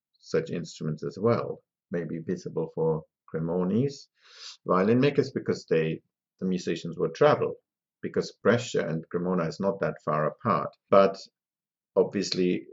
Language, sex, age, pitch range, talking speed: English, male, 50-69, 90-135 Hz, 125 wpm